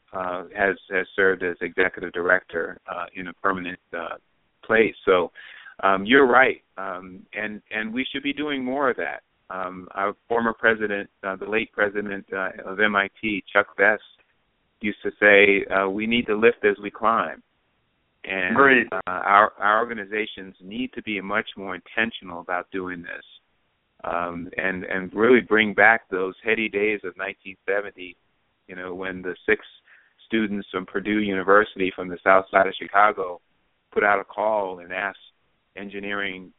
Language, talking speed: English, 160 wpm